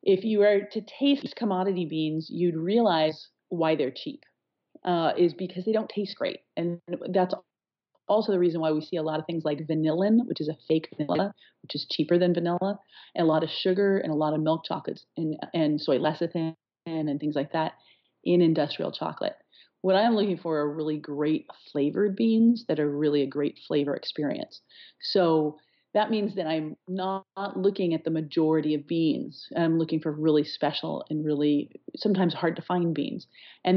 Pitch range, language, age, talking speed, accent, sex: 155-190 Hz, English, 30-49, 190 wpm, American, female